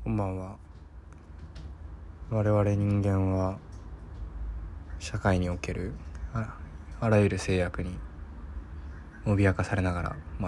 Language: Japanese